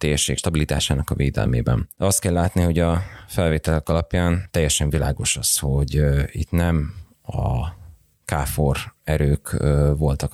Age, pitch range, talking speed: 30-49, 75-85 Hz, 130 wpm